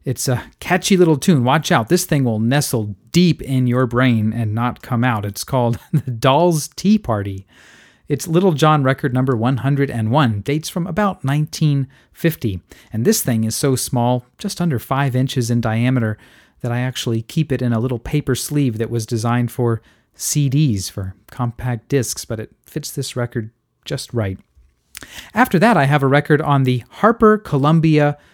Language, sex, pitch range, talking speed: English, male, 120-160 Hz, 175 wpm